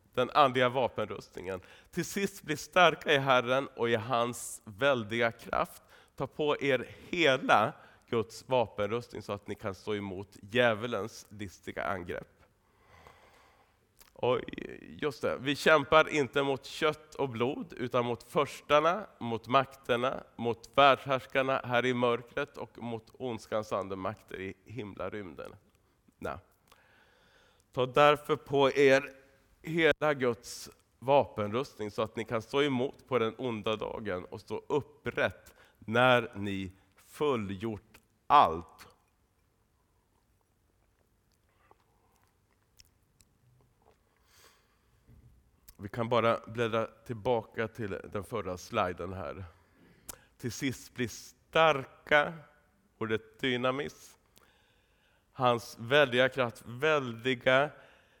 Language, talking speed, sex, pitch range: Swedish, 105 wpm, male, 105-135 Hz